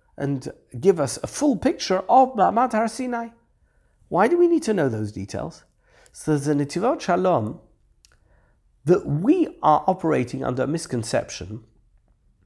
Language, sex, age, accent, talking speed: English, male, 50-69, British, 135 wpm